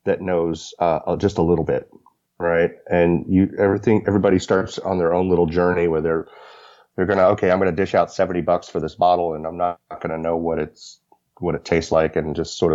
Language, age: English, 30-49